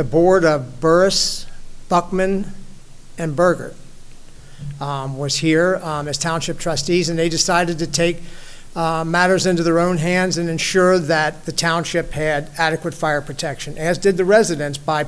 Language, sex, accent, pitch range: English, male, American, 150-175 Hz